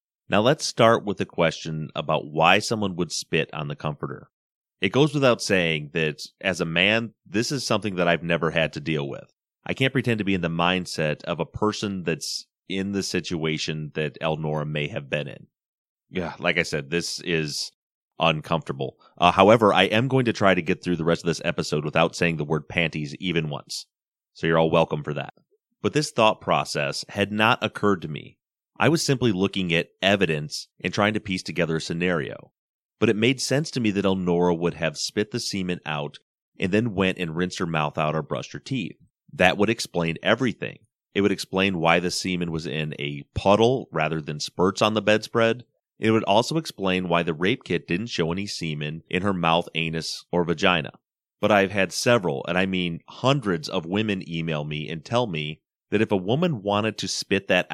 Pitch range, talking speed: 80-105 Hz, 205 wpm